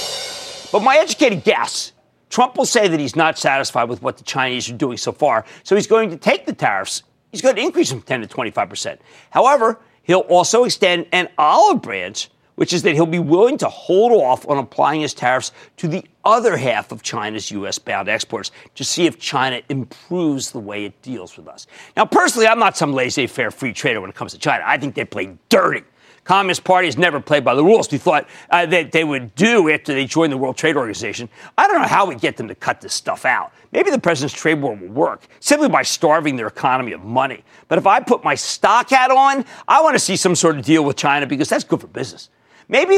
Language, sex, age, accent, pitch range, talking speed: English, male, 50-69, American, 135-200 Hz, 230 wpm